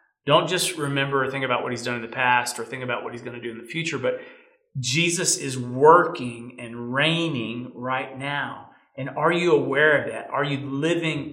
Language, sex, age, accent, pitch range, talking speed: English, male, 40-59, American, 125-160 Hz, 210 wpm